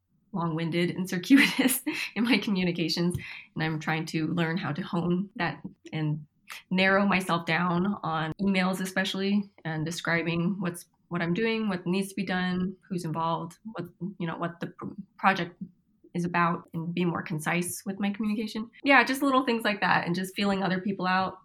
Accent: American